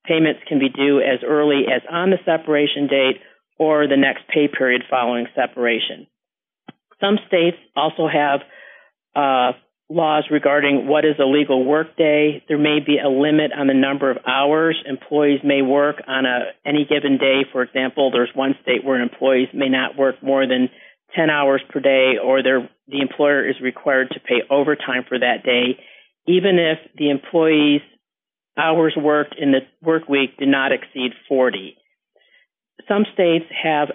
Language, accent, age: English, American, 40-59